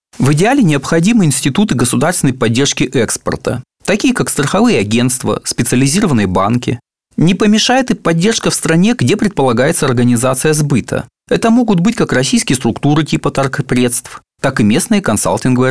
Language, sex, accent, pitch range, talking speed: Russian, male, native, 135-210 Hz, 135 wpm